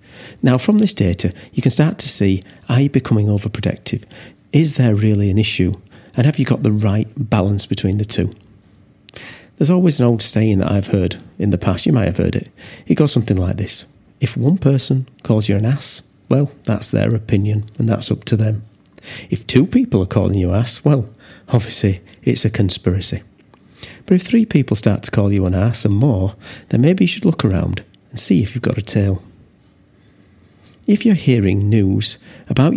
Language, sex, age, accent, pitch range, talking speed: English, male, 40-59, British, 100-125 Hz, 195 wpm